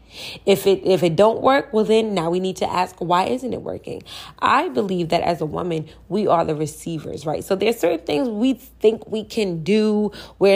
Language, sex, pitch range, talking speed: English, female, 175-250 Hz, 215 wpm